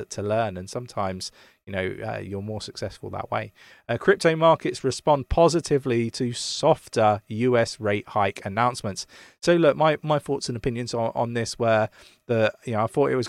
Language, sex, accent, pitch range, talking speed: English, male, British, 100-125 Hz, 185 wpm